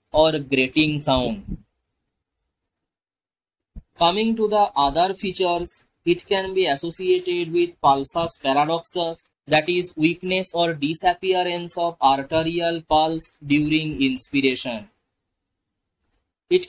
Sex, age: male, 20-39